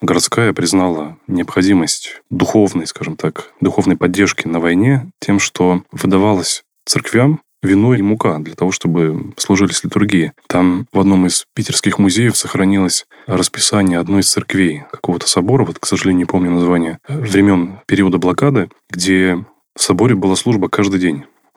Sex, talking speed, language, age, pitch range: male, 140 wpm, Russian, 20-39, 85-100 Hz